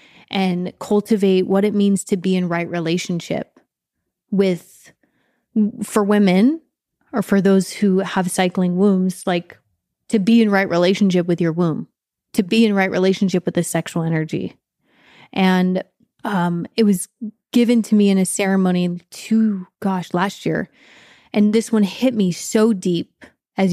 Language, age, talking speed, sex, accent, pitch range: English, 20-39, 150 wpm, female, American, 180-225 Hz